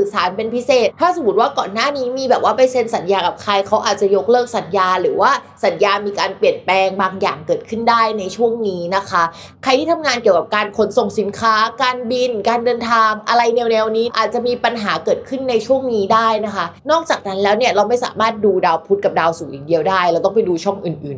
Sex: female